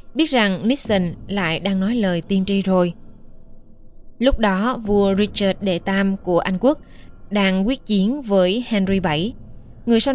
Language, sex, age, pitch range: Vietnamese, female, 20-39, 185-210 Hz